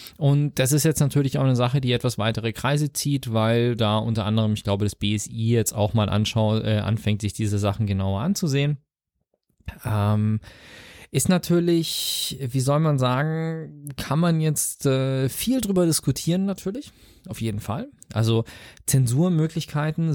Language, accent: German, German